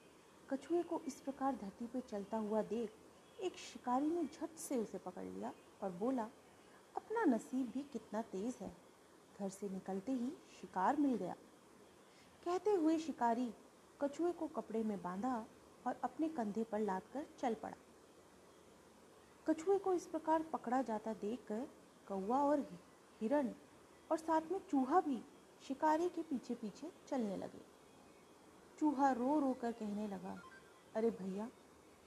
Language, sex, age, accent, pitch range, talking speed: Hindi, female, 40-59, native, 210-295 Hz, 145 wpm